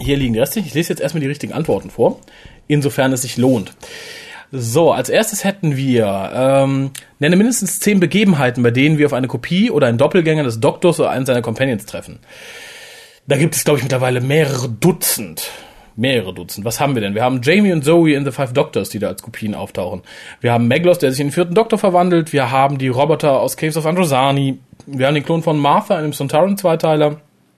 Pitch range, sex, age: 125-170 Hz, male, 30-49